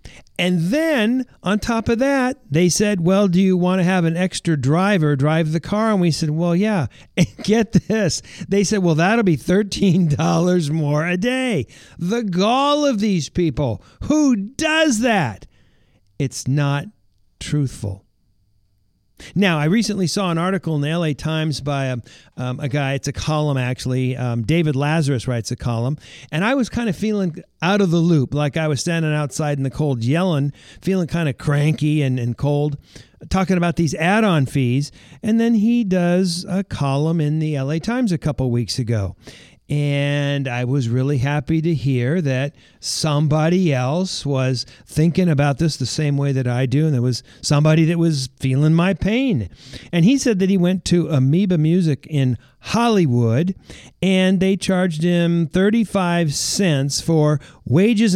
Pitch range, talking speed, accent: 140-185 Hz, 170 wpm, American